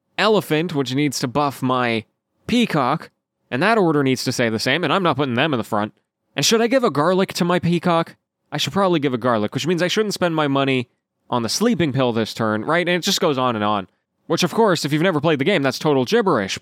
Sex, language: male, English